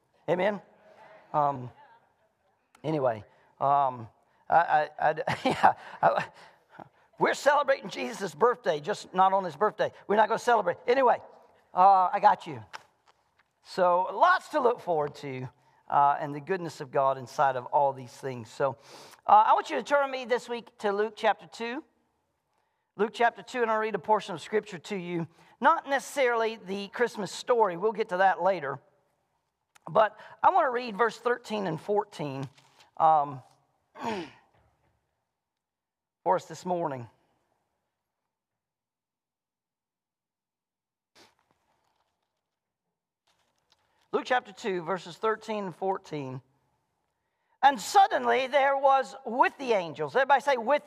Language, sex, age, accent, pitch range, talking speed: English, male, 40-59, American, 175-260 Hz, 130 wpm